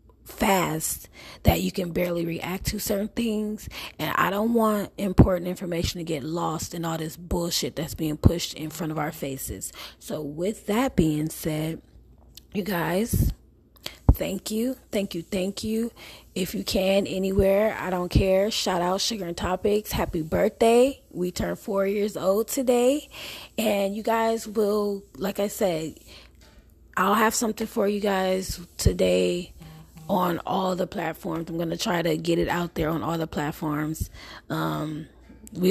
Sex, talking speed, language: female, 160 wpm, English